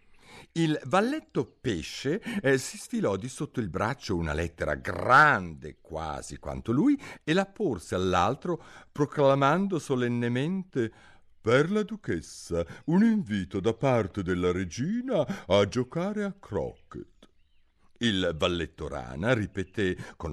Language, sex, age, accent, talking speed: Italian, male, 60-79, native, 120 wpm